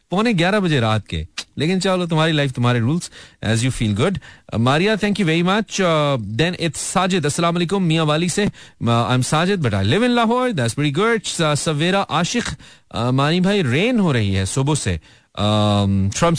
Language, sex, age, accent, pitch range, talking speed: Hindi, male, 40-59, native, 125-175 Hz, 85 wpm